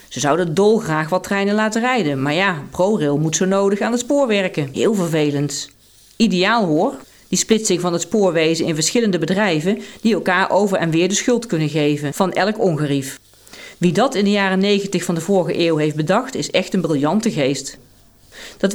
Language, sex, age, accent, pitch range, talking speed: Dutch, female, 40-59, Dutch, 150-210 Hz, 190 wpm